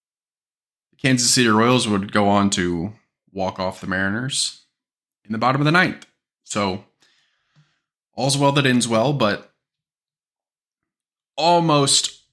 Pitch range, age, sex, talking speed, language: 105-145 Hz, 20-39, male, 120 wpm, English